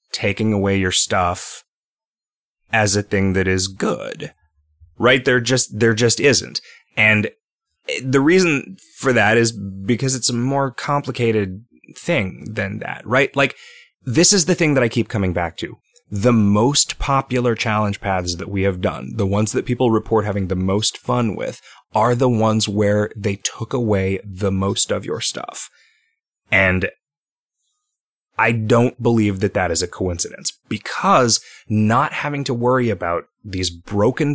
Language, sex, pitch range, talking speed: English, male, 95-125 Hz, 155 wpm